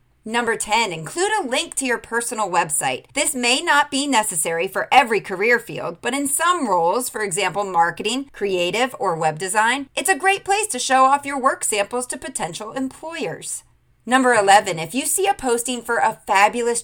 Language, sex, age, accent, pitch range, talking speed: English, female, 30-49, American, 195-270 Hz, 185 wpm